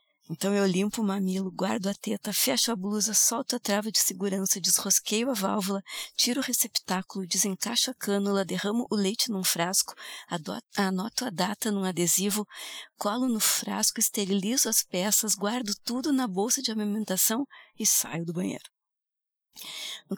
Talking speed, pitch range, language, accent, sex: 155 wpm, 190-230 Hz, Portuguese, Brazilian, female